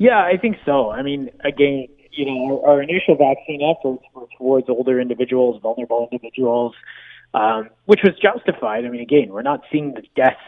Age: 20-39